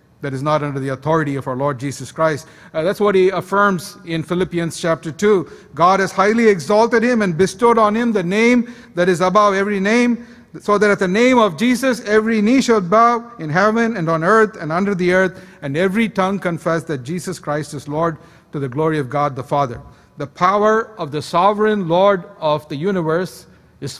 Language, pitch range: English, 150-210 Hz